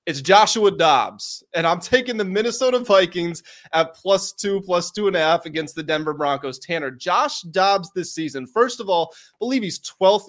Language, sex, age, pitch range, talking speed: English, male, 20-39, 150-180 Hz, 190 wpm